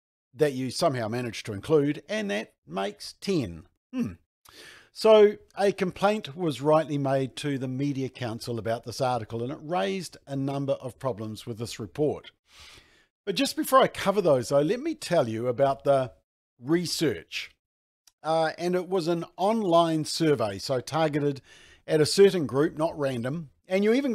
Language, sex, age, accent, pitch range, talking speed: English, male, 50-69, Australian, 125-175 Hz, 165 wpm